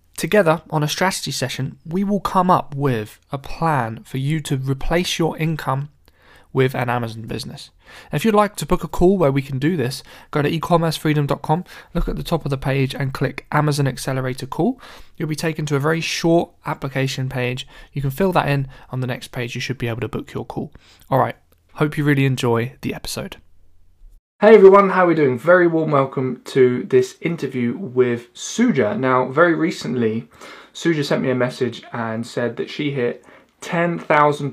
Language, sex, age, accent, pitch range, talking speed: English, male, 20-39, British, 125-165 Hz, 195 wpm